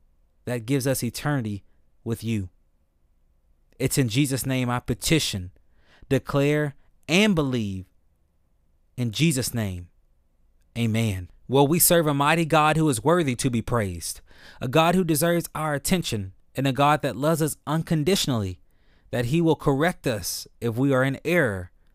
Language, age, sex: English, 20-39, male